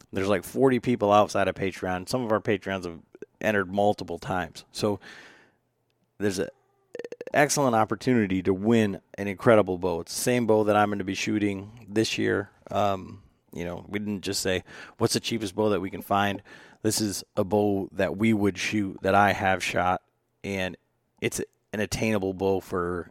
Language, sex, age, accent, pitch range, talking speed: English, male, 30-49, American, 95-110 Hz, 180 wpm